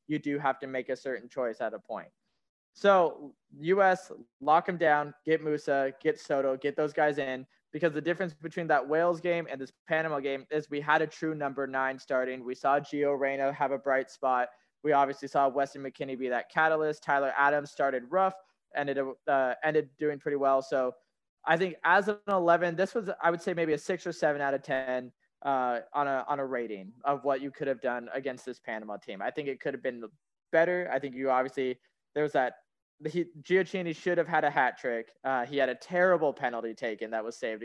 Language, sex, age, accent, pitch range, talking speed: English, male, 20-39, American, 135-165 Hz, 215 wpm